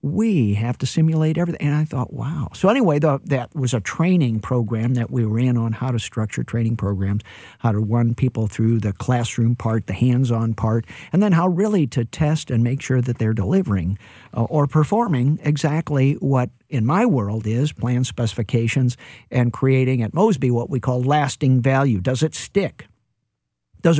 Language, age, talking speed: English, 50-69, 180 wpm